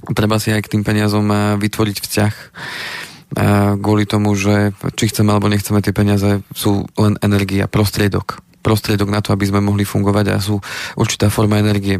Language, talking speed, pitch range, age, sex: Slovak, 170 wpm, 100-110 Hz, 20-39, male